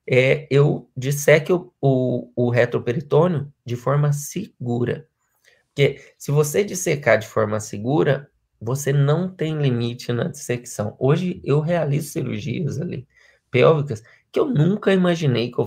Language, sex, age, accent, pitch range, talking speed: Portuguese, male, 20-39, Brazilian, 120-150 Hz, 135 wpm